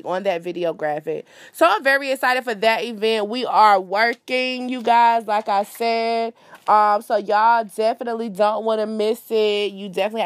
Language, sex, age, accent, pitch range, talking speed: English, female, 20-39, American, 195-235 Hz, 175 wpm